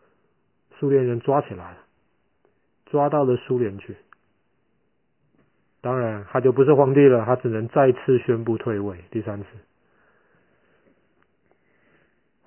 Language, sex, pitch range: Chinese, male, 105-125 Hz